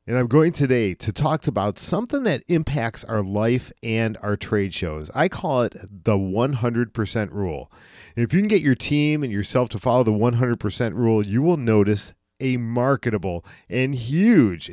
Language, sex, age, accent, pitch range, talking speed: English, male, 40-59, American, 110-140 Hz, 170 wpm